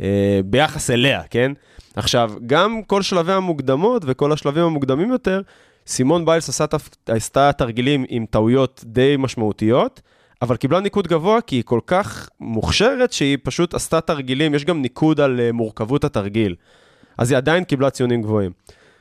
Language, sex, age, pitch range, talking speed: Hebrew, male, 20-39, 110-150 Hz, 140 wpm